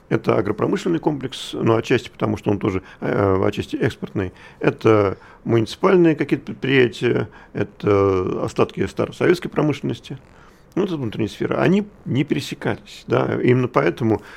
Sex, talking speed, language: male, 120 wpm, Russian